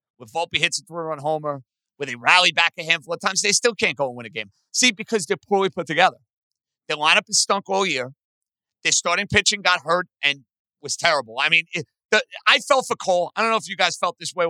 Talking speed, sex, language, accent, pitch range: 250 wpm, male, English, American, 155-210 Hz